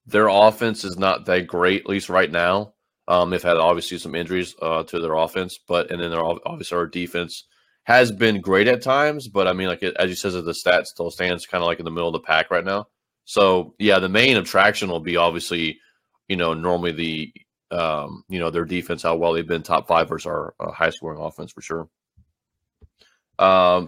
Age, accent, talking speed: 30-49, American, 220 wpm